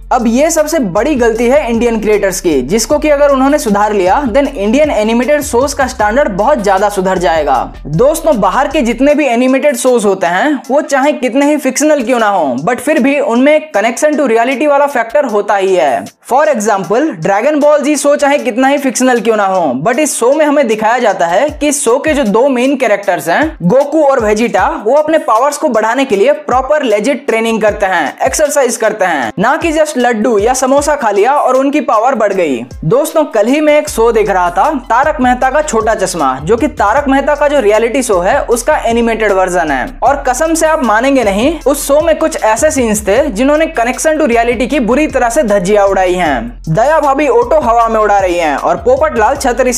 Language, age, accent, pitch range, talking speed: Hindi, 20-39, native, 215-295 Hz, 185 wpm